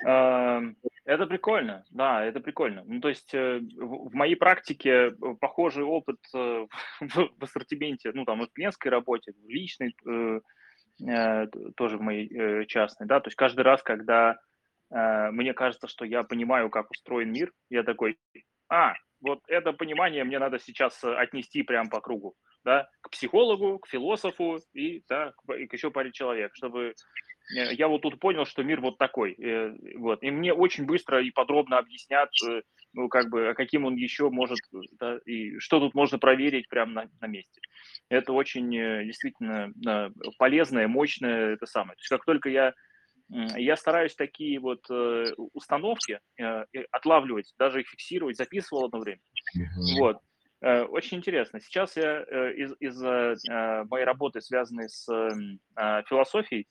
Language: Russian